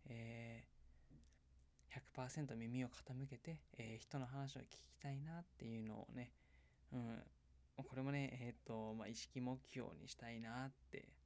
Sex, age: male, 20-39